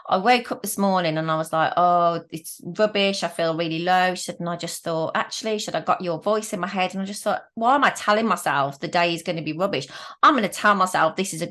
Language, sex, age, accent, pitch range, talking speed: English, female, 30-49, British, 165-200 Hz, 285 wpm